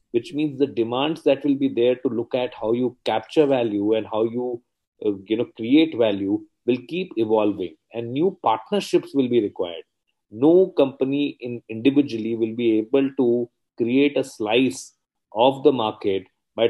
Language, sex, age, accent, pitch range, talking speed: English, male, 30-49, Indian, 115-140 Hz, 170 wpm